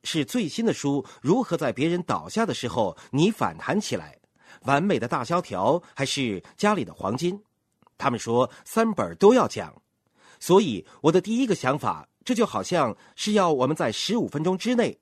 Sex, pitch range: male, 145-225 Hz